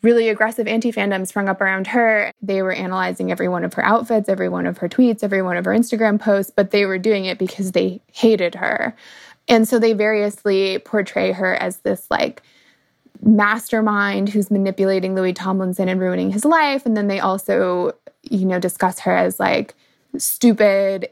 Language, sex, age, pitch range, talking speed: English, female, 20-39, 185-220 Hz, 185 wpm